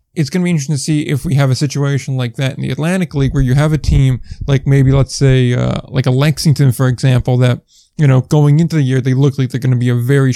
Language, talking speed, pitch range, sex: English, 285 wpm, 130-150 Hz, male